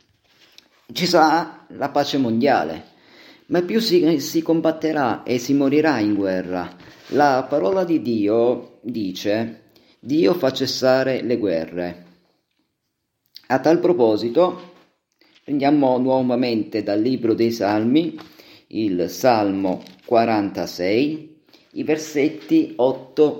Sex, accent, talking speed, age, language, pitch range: male, native, 105 wpm, 40-59, Italian, 110-155 Hz